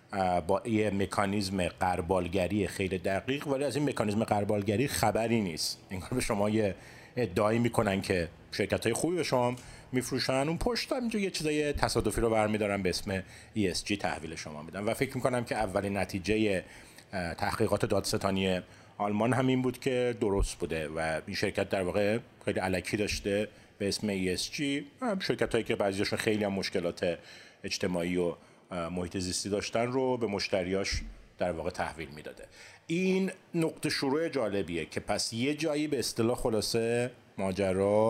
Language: Persian